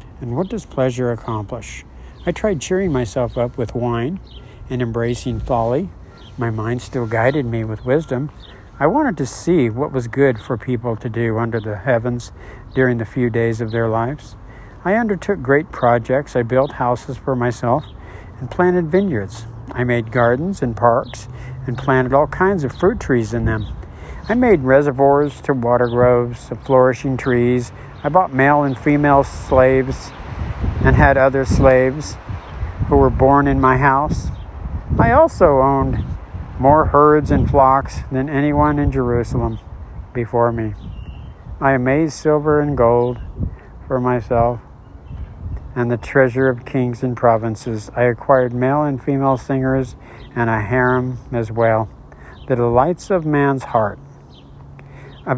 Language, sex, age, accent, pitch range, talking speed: English, male, 60-79, American, 115-135 Hz, 150 wpm